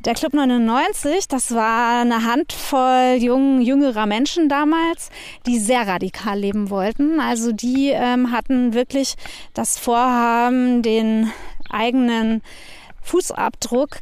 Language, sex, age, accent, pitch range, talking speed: German, female, 20-39, German, 225-265 Hz, 105 wpm